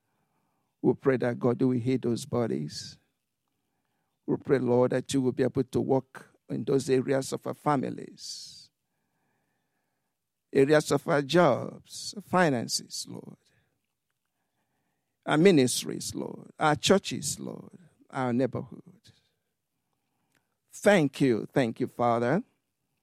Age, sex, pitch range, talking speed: 60-79, male, 130-155 Hz, 115 wpm